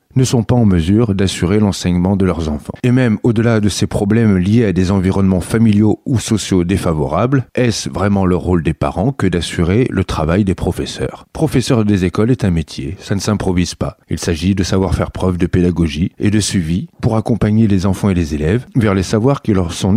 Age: 40-59